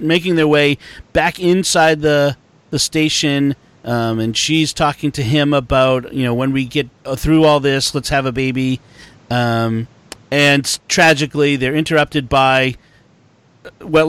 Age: 40-59